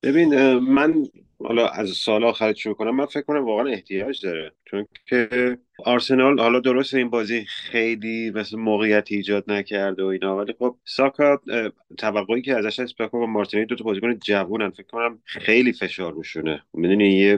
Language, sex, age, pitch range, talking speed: Persian, male, 30-49, 90-105 Hz, 160 wpm